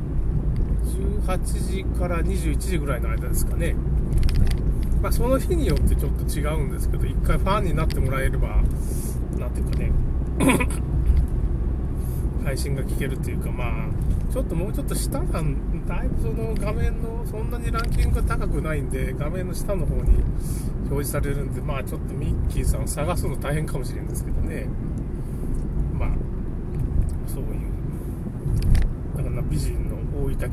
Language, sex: Japanese, male